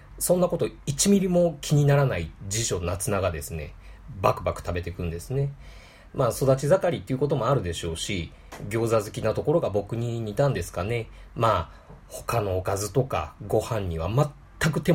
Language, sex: Japanese, male